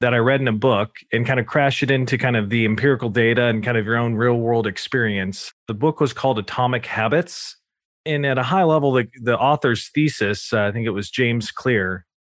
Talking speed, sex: 230 wpm, male